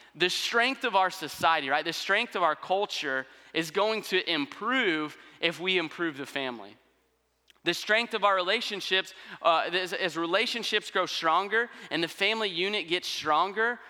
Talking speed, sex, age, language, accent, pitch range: 160 wpm, male, 30-49, English, American, 140-195 Hz